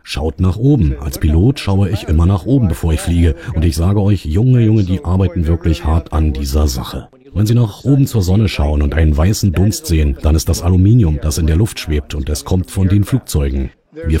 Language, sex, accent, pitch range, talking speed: English, male, German, 80-100 Hz, 230 wpm